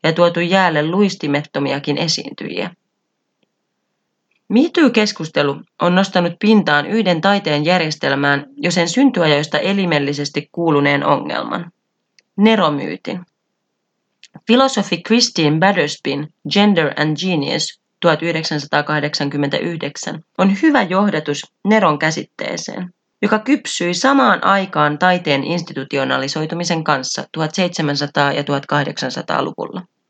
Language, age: Finnish, 30-49